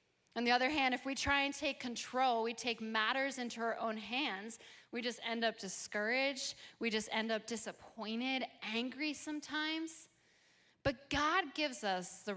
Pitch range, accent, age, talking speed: 205-280 Hz, American, 20-39, 165 wpm